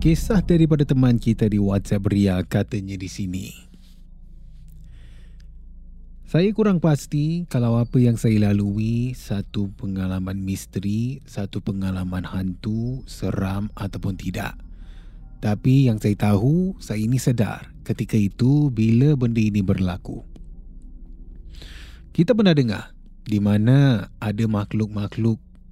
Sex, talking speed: male, 110 wpm